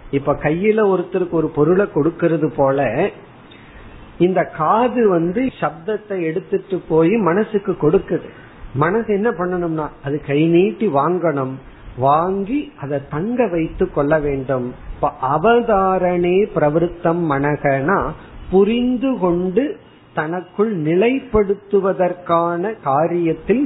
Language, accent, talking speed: Tamil, native, 95 wpm